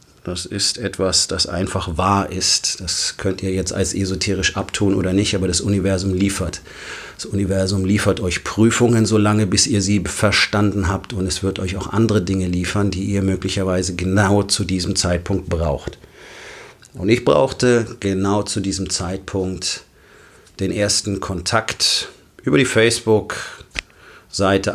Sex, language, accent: male, German, German